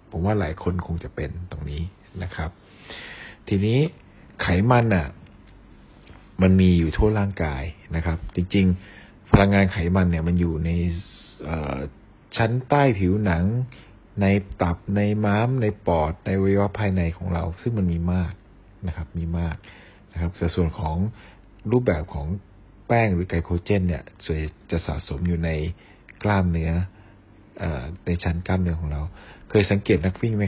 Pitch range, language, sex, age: 85-100 Hz, Thai, male, 60-79